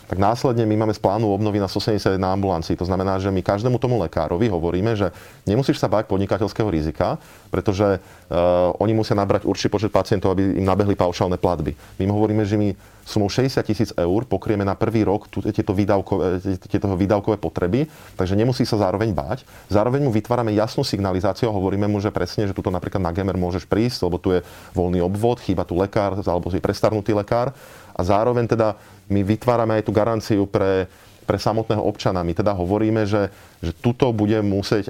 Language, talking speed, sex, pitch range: Slovak, 185 wpm, male, 90-110 Hz